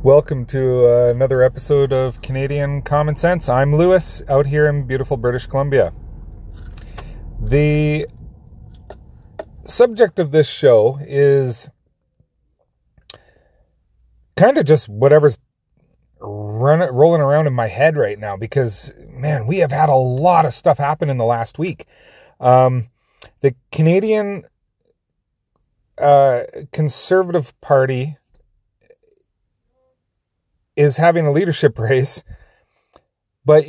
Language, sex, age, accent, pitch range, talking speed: English, male, 30-49, American, 115-150 Hz, 105 wpm